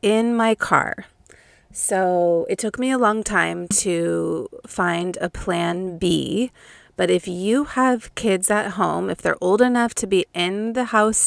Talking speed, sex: 165 wpm, female